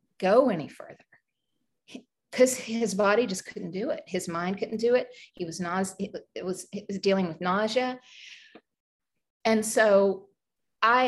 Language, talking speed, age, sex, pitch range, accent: English, 160 wpm, 40-59, female, 185-230 Hz, American